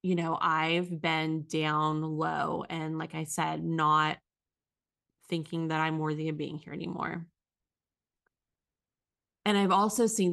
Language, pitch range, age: English, 160-185 Hz, 20-39